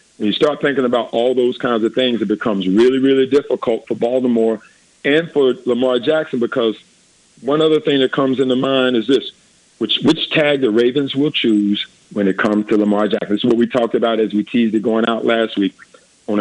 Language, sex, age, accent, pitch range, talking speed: English, male, 50-69, American, 110-140 Hz, 215 wpm